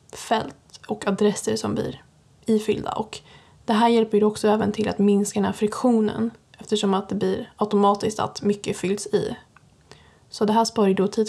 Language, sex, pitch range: Swedish, female, 205-225 Hz